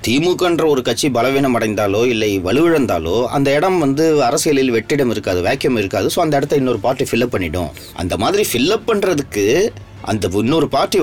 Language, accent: Tamil, native